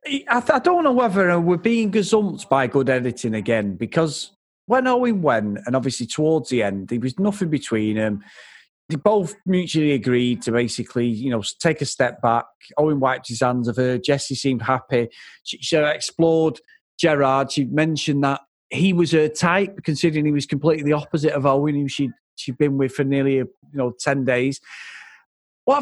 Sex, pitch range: male, 130-200 Hz